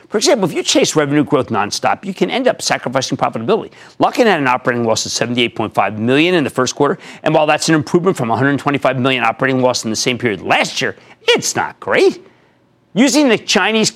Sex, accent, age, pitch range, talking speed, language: male, American, 40-59, 140-225 Hz, 205 wpm, English